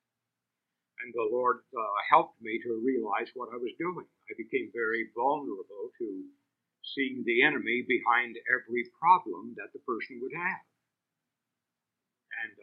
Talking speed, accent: 140 wpm, American